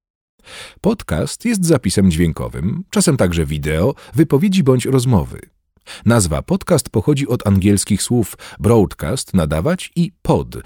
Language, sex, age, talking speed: Polish, male, 40-59, 115 wpm